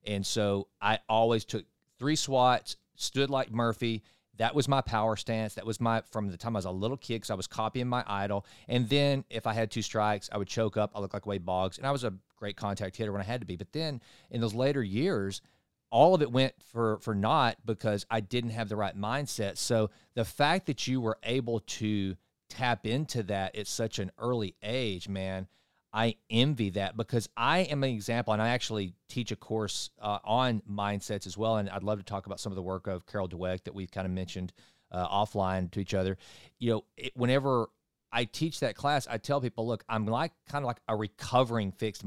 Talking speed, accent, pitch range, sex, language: 225 wpm, American, 100-125 Hz, male, English